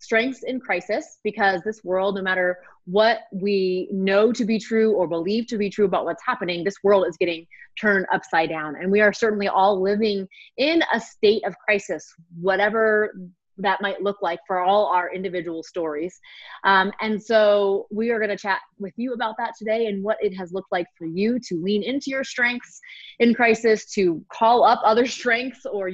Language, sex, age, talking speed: English, female, 30-49, 195 wpm